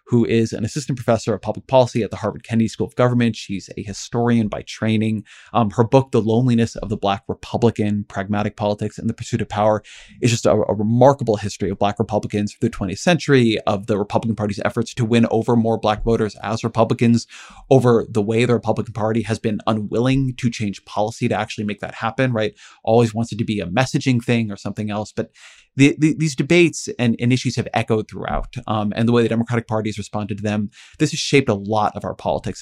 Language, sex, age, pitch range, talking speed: English, male, 30-49, 105-120 Hz, 220 wpm